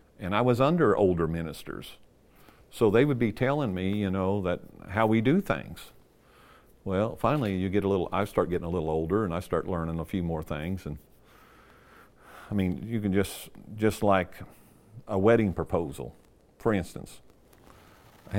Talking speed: 175 wpm